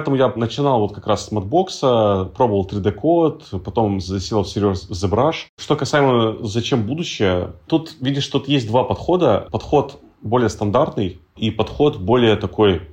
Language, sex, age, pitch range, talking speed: Russian, male, 30-49, 100-120 Hz, 155 wpm